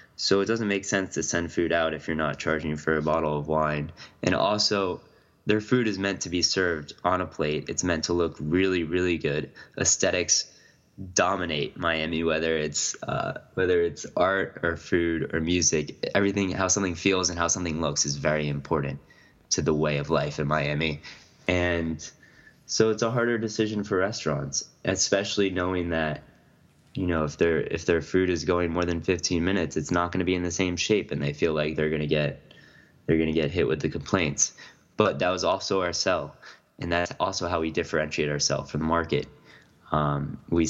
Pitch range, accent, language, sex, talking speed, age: 80-90 Hz, American, English, male, 200 wpm, 20-39